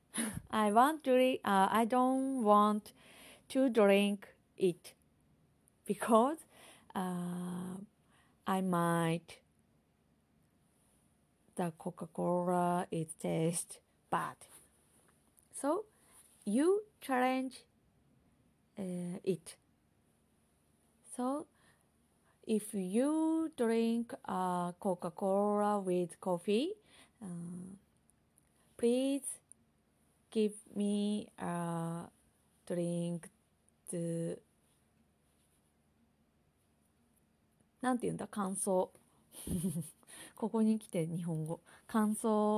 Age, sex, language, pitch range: 20-39, female, Japanese, 170-225 Hz